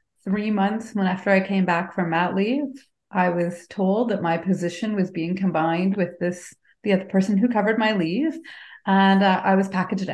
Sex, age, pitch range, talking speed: female, 30-49, 185-220 Hz, 195 wpm